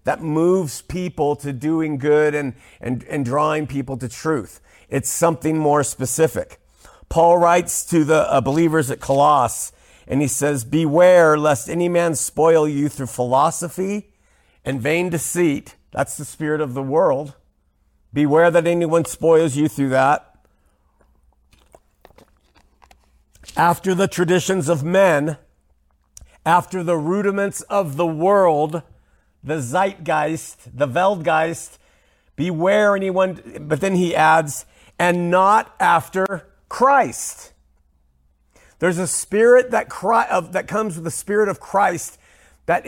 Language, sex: English, male